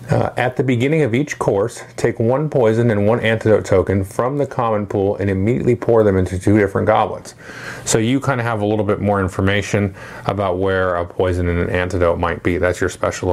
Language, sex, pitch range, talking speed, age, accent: English, male, 95-115 Hz, 215 wpm, 30-49, American